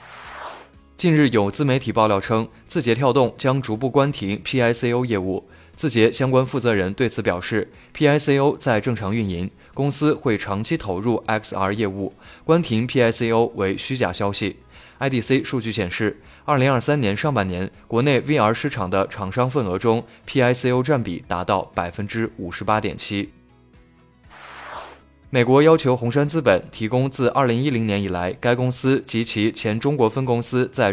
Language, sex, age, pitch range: Chinese, male, 20-39, 100-130 Hz